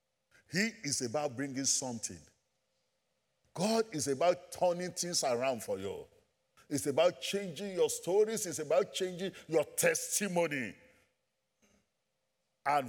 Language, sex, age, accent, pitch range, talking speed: English, male, 50-69, Nigerian, 165-275 Hz, 110 wpm